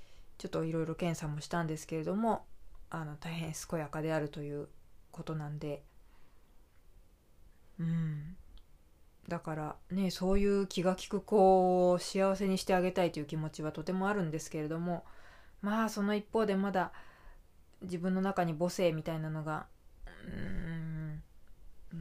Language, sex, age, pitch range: Japanese, female, 20-39, 145-195 Hz